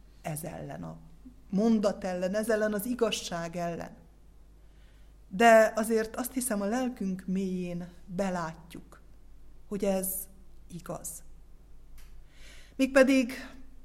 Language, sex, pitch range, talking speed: Hungarian, female, 175-225 Hz, 95 wpm